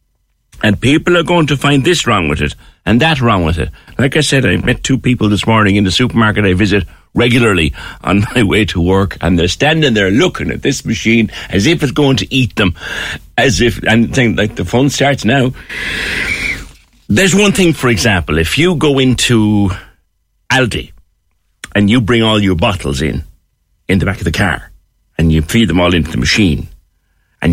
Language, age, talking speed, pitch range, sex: English, 60-79, 200 wpm, 85-135 Hz, male